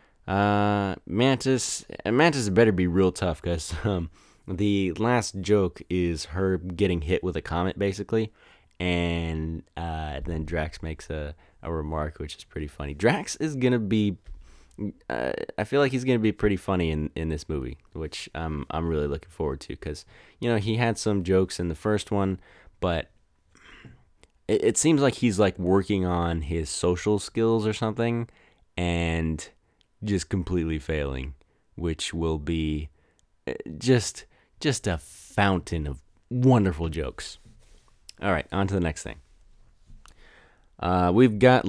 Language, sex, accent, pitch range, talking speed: English, male, American, 80-110 Hz, 150 wpm